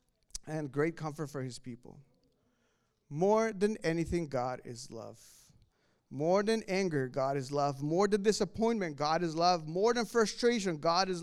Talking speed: 155 wpm